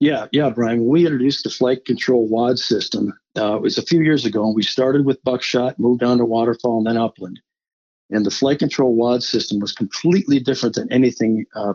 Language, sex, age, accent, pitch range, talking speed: English, male, 50-69, American, 115-130 Hz, 210 wpm